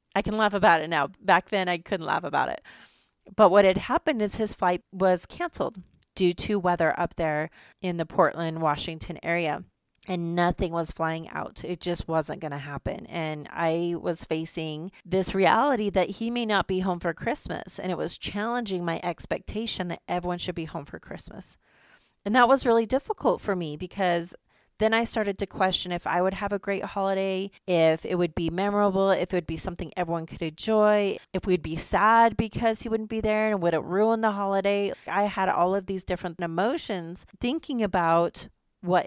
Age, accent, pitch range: 30-49, American, 170-200 Hz